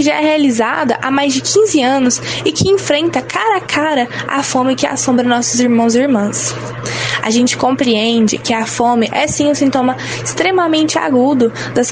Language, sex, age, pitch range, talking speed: Portuguese, female, 10-29, 220-275 Hz, 175 wpm